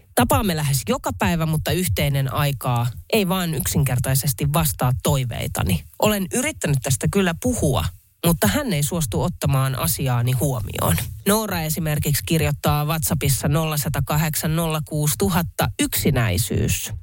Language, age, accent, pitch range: Finnish, 30-49, native, 120-165 Hz